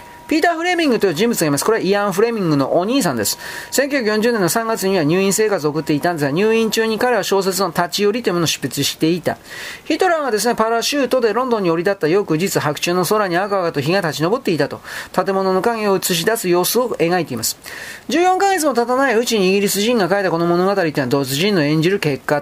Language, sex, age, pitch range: Japanese, male, 40-59, 155-220 Hz